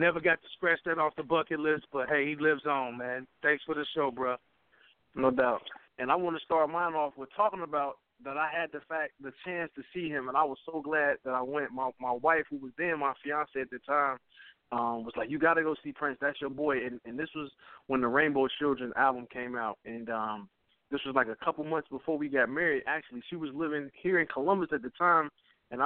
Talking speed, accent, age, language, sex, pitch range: 250 wpm, American, 20-39, English, male, 135-165 Hz